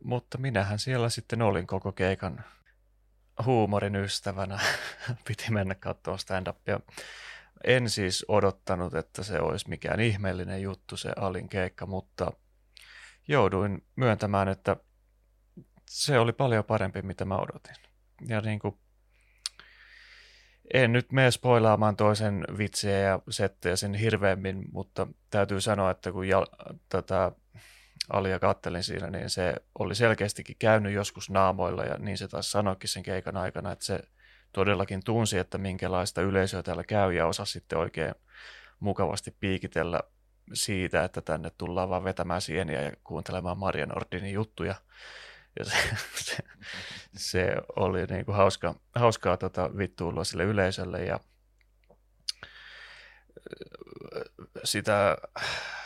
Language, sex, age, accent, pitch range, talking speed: Finnish, male, 30-49, native, 95-110 Hz, 120 wpm